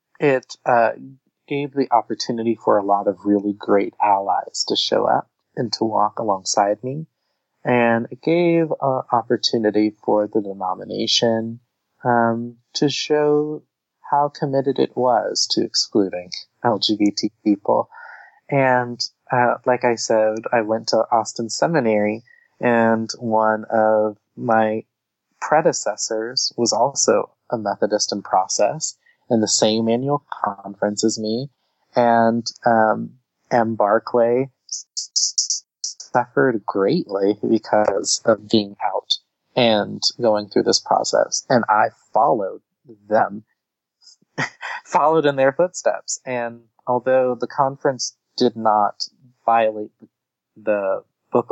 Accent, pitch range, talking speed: American, 110-130 Hz, 115 wpm